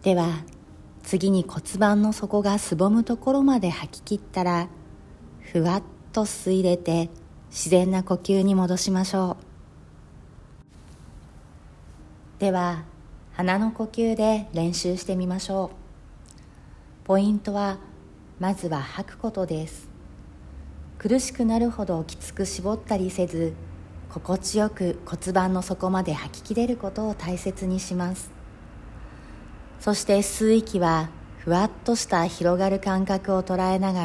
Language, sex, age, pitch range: Japanese, female, 40-59, 145-200 Hz